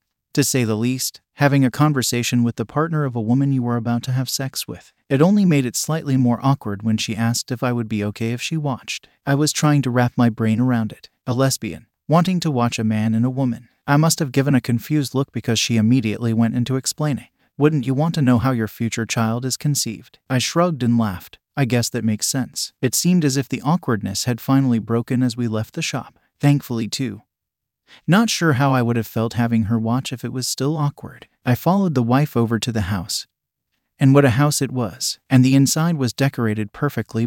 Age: 30-49